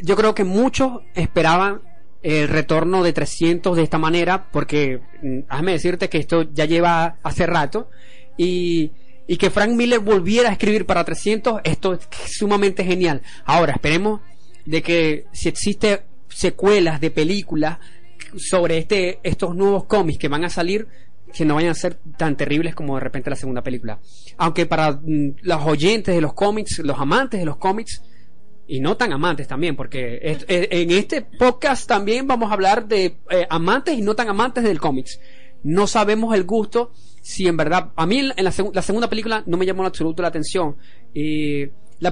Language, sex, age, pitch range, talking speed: English, male, 30-49, 155-200 Hz, 185 wpm